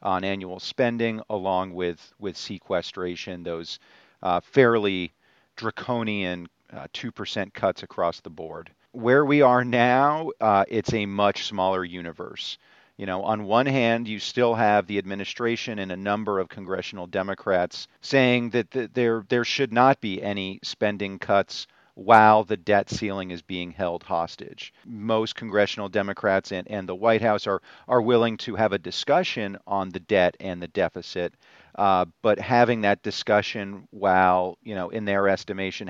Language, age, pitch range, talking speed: English, 40-59, 95-115 Hz, 160 wpm